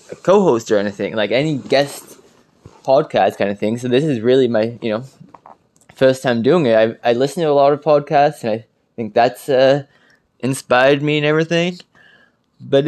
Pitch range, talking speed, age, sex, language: 120-150 Hz, 185 wpm, 20-39, male, English